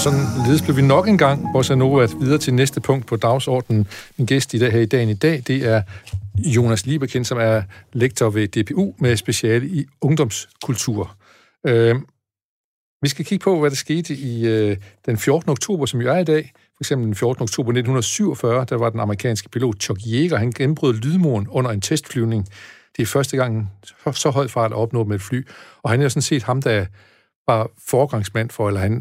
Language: Danish